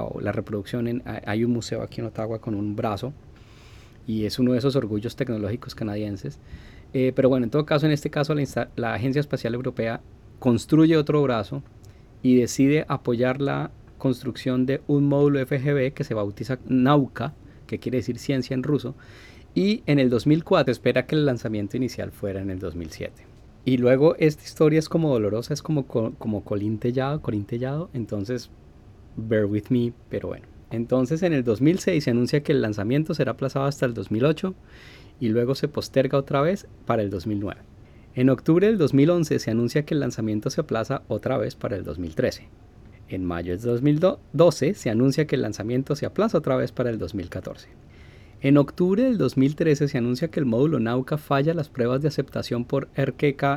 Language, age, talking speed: Spanish, 30-49, 180 wpm